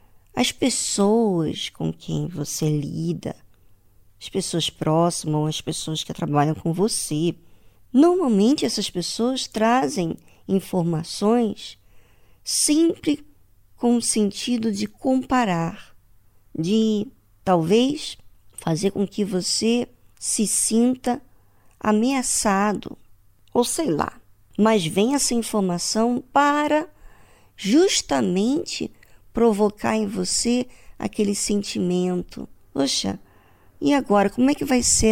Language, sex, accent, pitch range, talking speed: Portuguese, male, Brazilian, 160-230 Hz, 100 wpm